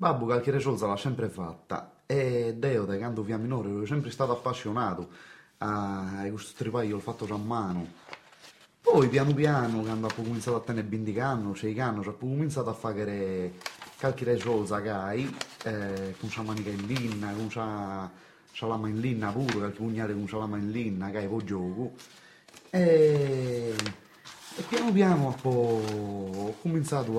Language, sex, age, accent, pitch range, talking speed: Italian, male, 30-49, native, 105-130 Hz, 170 wpm